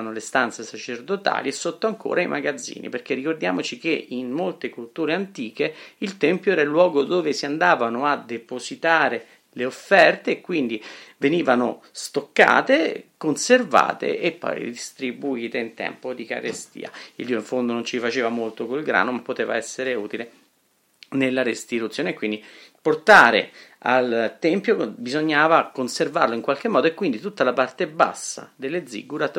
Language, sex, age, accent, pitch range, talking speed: Italian, male, 40-59, native, 115-155 Hz, 145 wpm